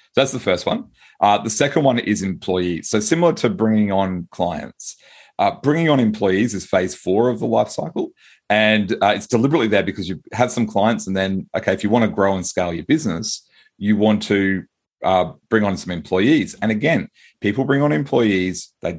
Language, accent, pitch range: English, Australian, 95-120 Hz